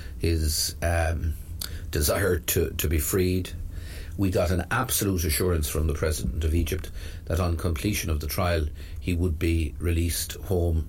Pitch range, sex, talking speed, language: 80-90 Hz, male, 155 wpm, English